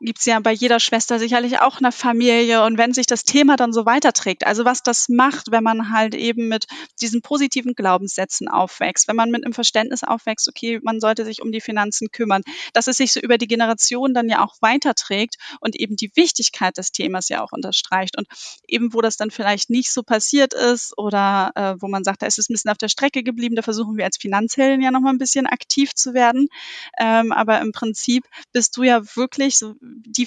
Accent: German